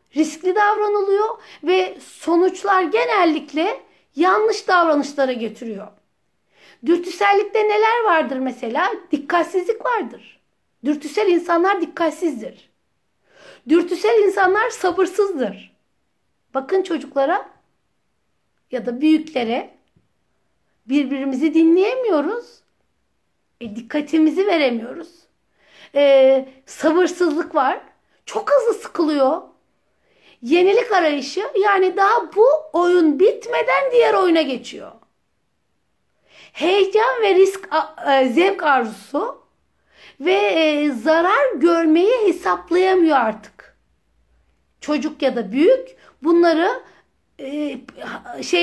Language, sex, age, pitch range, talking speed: Turkish, female, 60-79, 285-385 Hz, 75 wpm